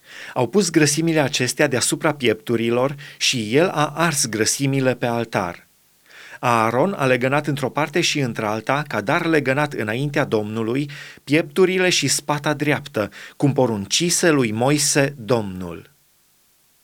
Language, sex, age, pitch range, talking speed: Romanian, male, 30-49, 120-150 Hz, 120 wpm